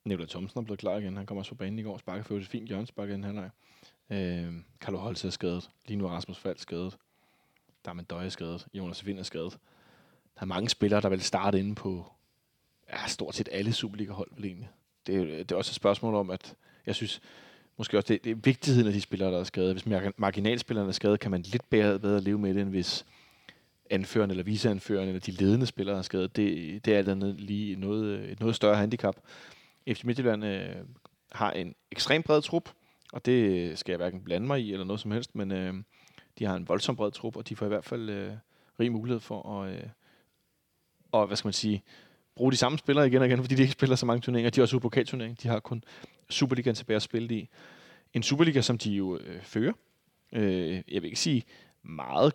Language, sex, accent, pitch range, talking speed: Danish, male, native, 95-120 Hz, 220 wpm